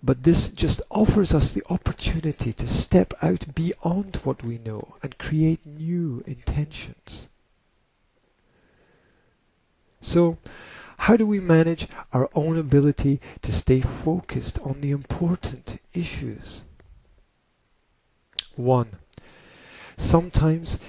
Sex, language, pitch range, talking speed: male, English, 110-160 Hz, 100 wpm